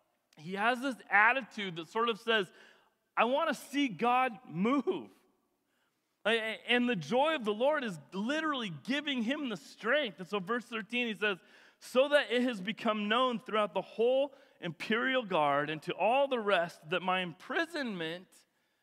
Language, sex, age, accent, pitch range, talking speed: English, male, 40-59, American, 205-260 Hz, 165 wpm